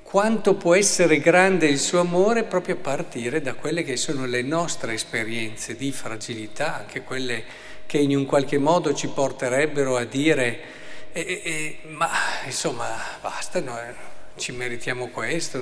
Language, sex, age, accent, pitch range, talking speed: Italian, male, 50-69, native, 125-170 Hz, 155 wpm